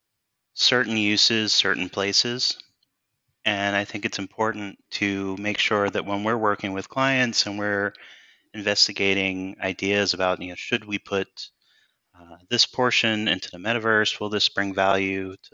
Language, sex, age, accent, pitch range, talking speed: English, male, 30-49, American, 95-110 Hz, 150 wpm